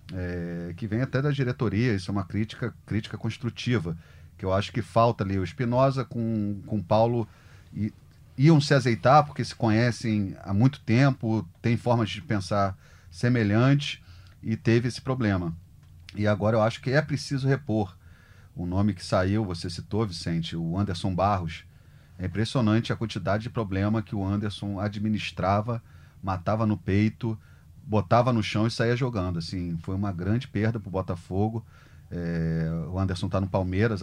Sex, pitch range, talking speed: male, 95-120 Hz, 165 wpm